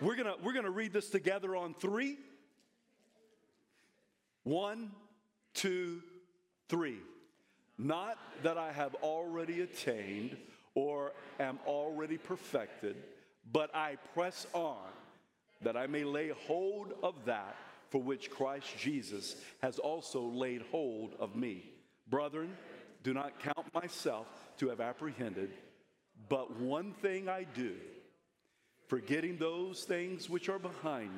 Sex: male